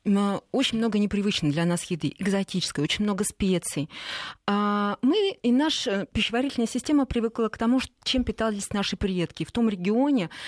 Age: 20-39